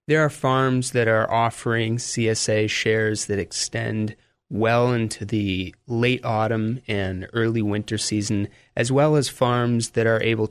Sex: male